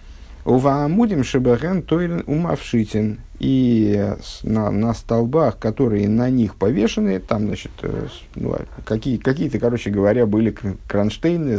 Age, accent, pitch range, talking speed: 50-69, native, 105-130 Hz, 80 wpm